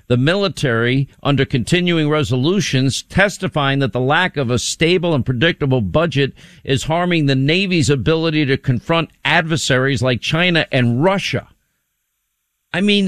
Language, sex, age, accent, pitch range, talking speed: English, male, 50-69, American, 125-160 Hz, 135 wpm